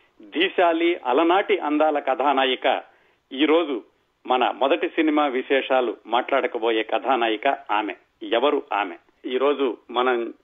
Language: Telugu